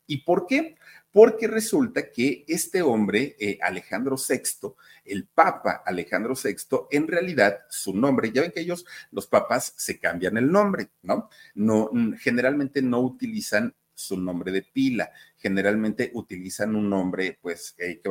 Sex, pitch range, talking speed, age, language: male, 105-175 Hz, 145 wpm, 50-69, Spanish